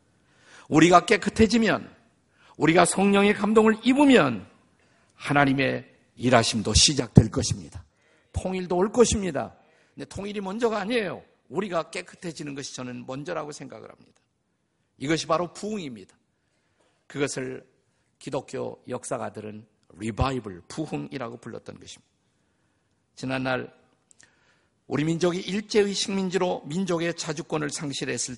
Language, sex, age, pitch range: Korean, male, 50-69, 125-185 Hz